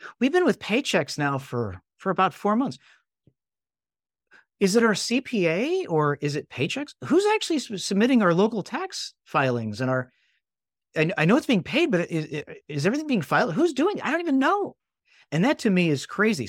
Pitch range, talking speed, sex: 130-205 Hz, 190 wpm, male